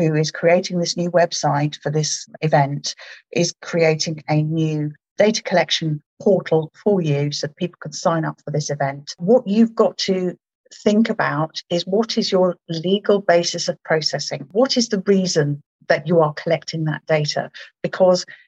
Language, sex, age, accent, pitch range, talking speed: English, female, 50-69, British, 155-195 Hz, 170 wpm